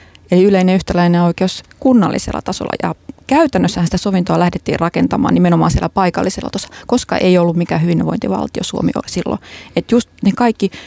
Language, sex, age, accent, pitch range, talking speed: Finnish, female, 30-49, native, 170-205 Hz, 155 wpm